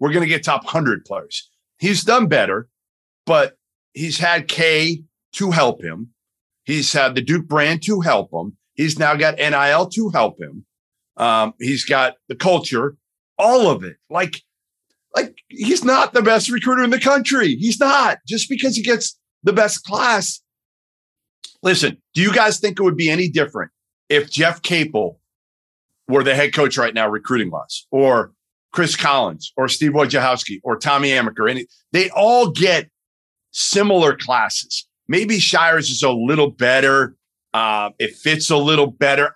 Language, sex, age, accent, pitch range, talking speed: English, male, 40-59, American, 130-200 Hz, 160 wpm